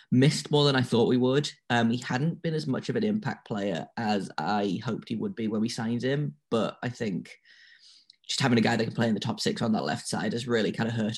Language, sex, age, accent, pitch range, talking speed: English, male, 10-29, British, 115-145 Hz, 270 wpm